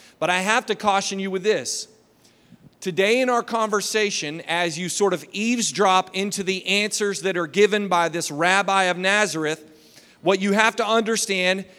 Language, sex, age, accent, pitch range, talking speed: English, male, 40-59, American, 170-210 Hz, 170 wpm